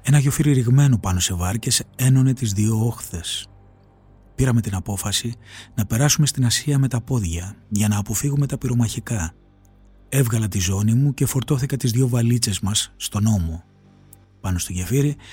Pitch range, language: 100-135 Hz, Greek